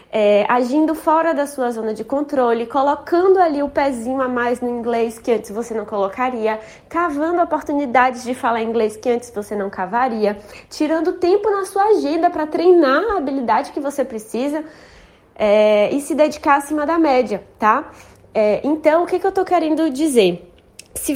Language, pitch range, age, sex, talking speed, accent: Portuguese, 235-320 Hz, 20-39, female, 165 wpm, Brazilian